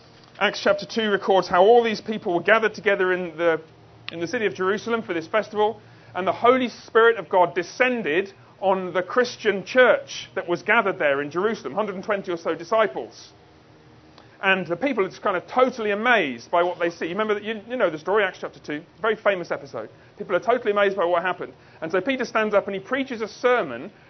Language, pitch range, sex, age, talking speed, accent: English, 175-225 Hz, male, 40-59, 215 wpm, British